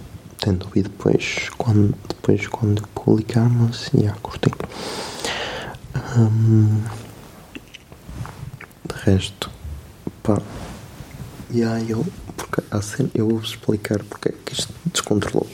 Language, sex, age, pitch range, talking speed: Portuguese, male, 20-39, 105-120 Hz, 95 wpm